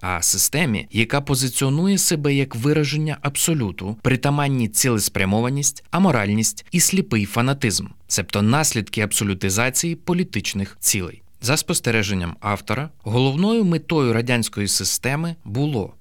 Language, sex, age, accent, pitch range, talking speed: Ukrainian, male, 20-39, native, 105-145 Hz, 100 wpm